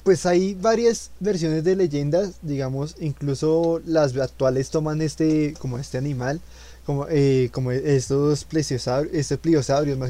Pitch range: 125-155 Hz